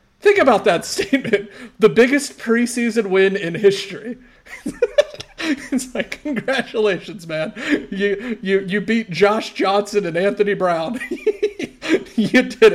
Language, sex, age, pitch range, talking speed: English, male, 40-59, 160-230 Hz, 120 wpm